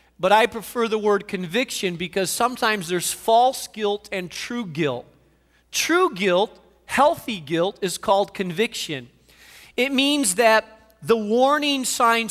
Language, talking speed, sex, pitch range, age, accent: English, 130 wpm, male, 180-235 Hz, 40-59, American